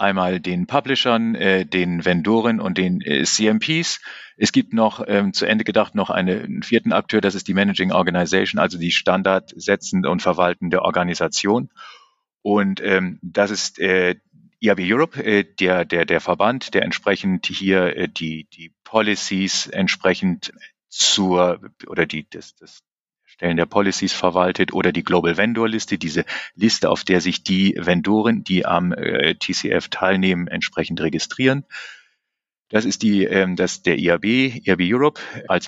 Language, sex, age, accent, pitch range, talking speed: German, male, 40-59, German, 90-105 Hz, 150 wpm